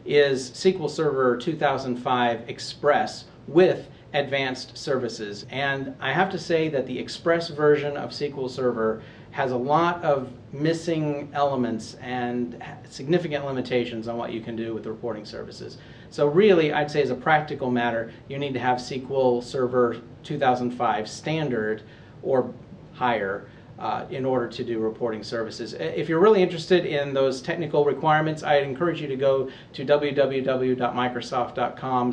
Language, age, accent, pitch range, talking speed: English, 40-59, American, 120-150 Hz, 145 wpm